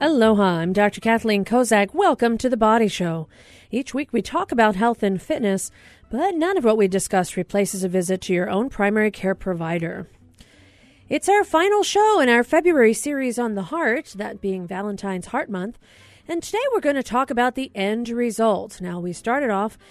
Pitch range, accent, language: 195-265 Hz, American, English